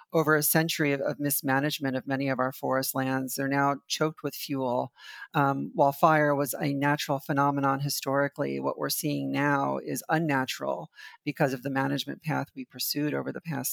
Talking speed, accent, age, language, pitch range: 175 wpm, American, 40-59, English, 135-150 Hz